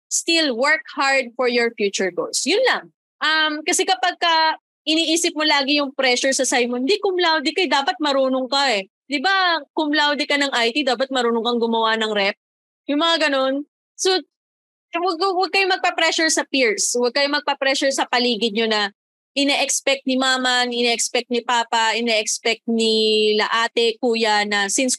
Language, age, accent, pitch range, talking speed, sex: Filipino, 20-39, native, 230-295 Hz, 165 wpm, female